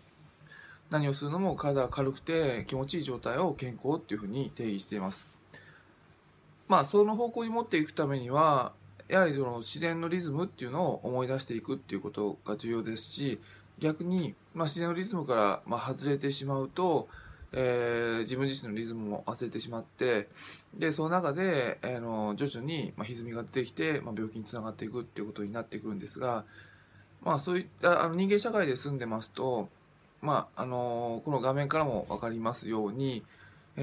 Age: 20-39